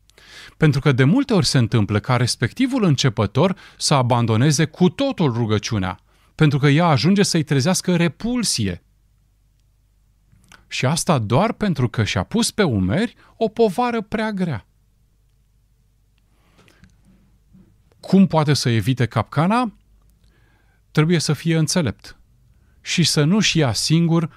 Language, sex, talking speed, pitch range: Romanian, male, 120 wpm, 105-150 Hz